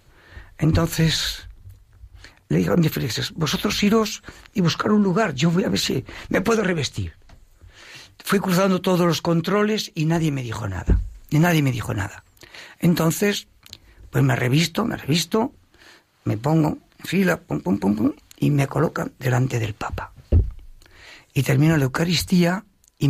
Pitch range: 110-160 Hz